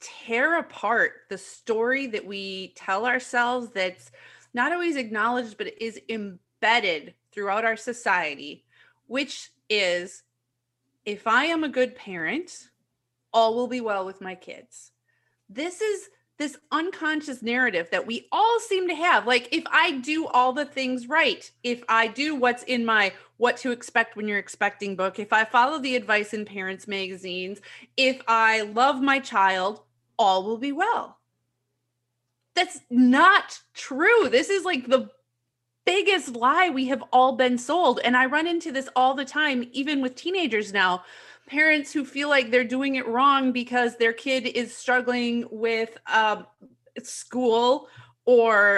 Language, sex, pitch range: English, female, 205-275 Hz